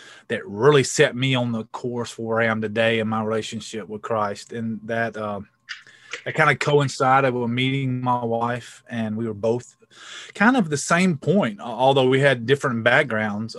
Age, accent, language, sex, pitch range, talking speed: 30-49, American, English, male, 110-130 Hz, 190 wpm